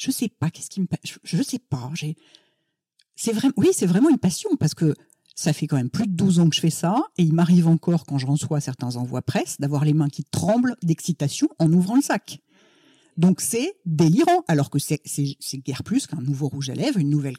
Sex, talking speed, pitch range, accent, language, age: female, 240 wpm, 150-190 Hz, French, French, 50-69